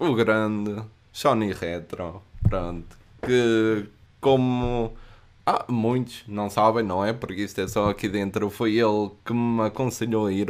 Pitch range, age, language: 105-125 Hz, 20-39, Portuguese